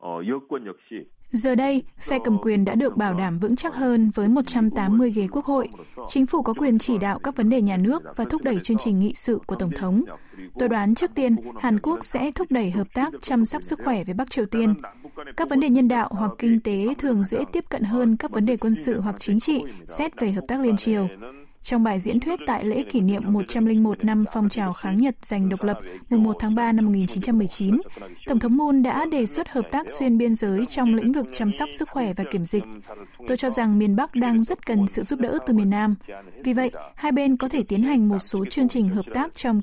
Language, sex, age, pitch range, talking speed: Vietnamese, female, 20-39, 205-255 Hz, 240 wpm